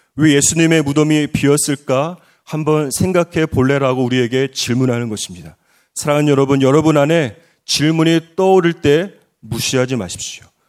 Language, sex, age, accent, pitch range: Korean, male, 30-49, native, 140-185 Hz